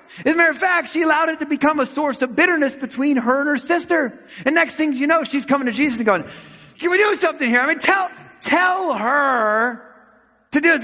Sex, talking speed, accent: male, 240 wpm, American